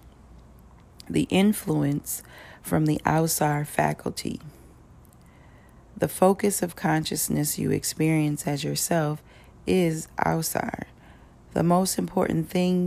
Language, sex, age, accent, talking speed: English, female, 40-59, American, 95 wpm